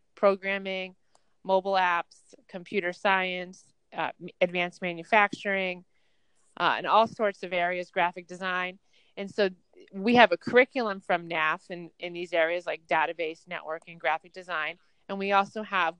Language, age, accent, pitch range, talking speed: English, 30-49, American, 170-190 Hz, 140 wpm